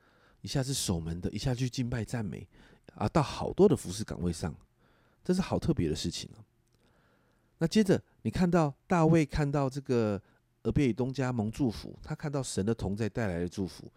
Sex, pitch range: male, 105-140 Hz